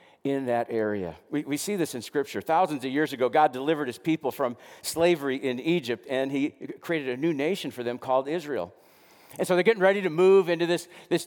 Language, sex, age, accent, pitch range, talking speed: English, male, 50-69, American, 135-185 Hz, 220 wpm